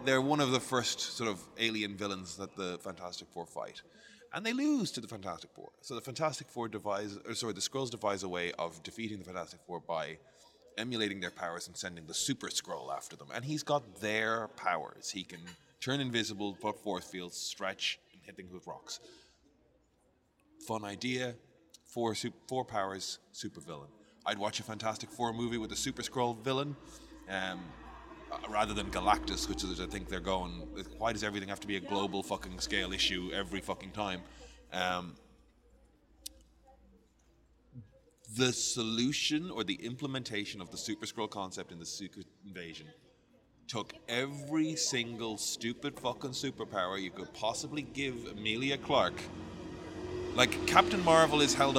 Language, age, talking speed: English, 30-49, 160 wpm